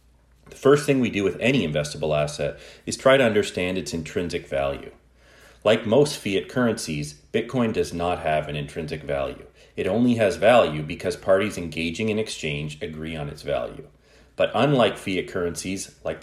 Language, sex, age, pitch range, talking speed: English, male, 30-49, 75-110 Hz, 165 wpm